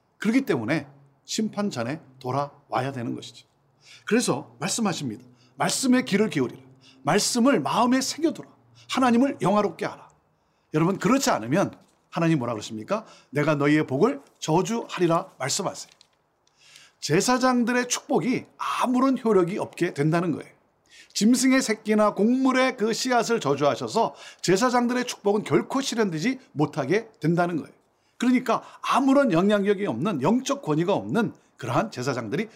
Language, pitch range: Korean, 145-235 Hz